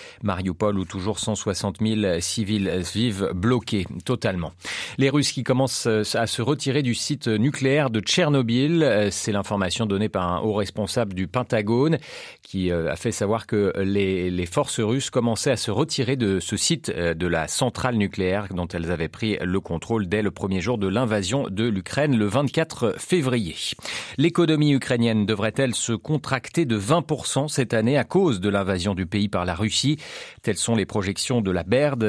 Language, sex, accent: French, male, French